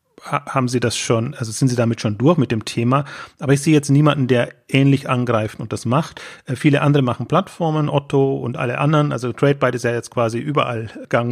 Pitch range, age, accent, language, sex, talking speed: 120-145 Hz, 30-49, German, German, male, 215 wpm